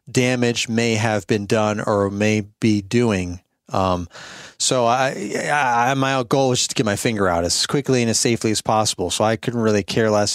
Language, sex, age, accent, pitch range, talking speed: English, male, 30-49, American, 110-130 Hz, 205 wpm